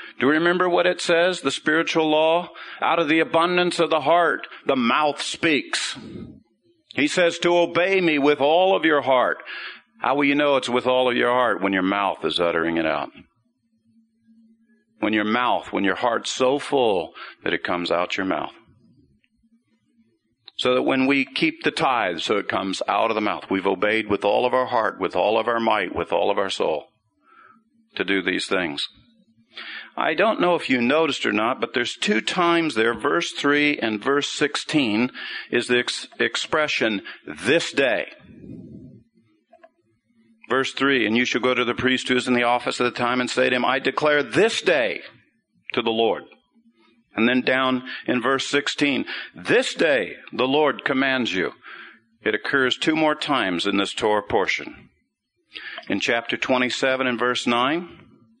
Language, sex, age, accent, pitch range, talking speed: English, male, 50-69, American, 120-170 Hz, 180 wpm